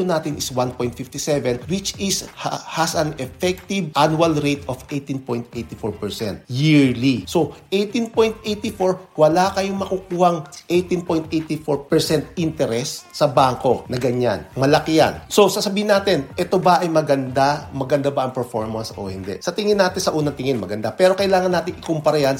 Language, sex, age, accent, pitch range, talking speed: English, male, 50-69, Filipino, 130-180 Hz, 140 wpm